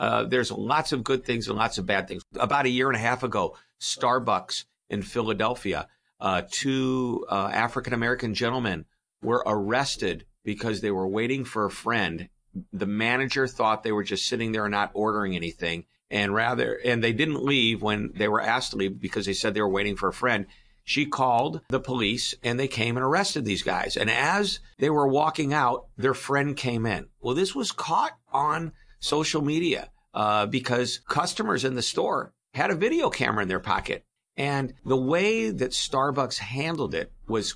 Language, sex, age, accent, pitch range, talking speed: English, male, 50-69, American, 110-140 Hz, 185 wpm